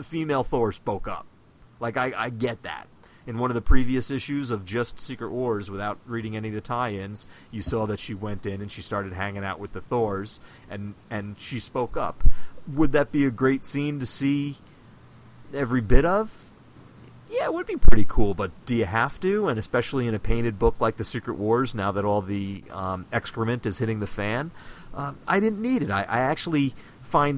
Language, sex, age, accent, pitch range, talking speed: English, male, 40-59, American, 95-120 Hz, 210 wpm